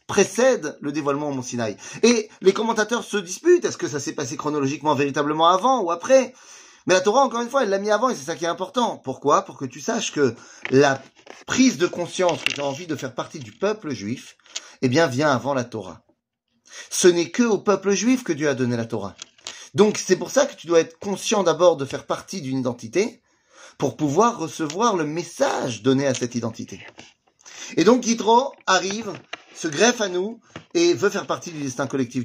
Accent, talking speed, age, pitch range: French, 210 wpm, 30-49, 135-200 Hz